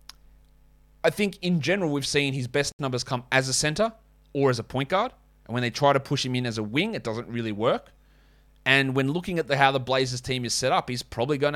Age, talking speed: 30-49, 245 wpm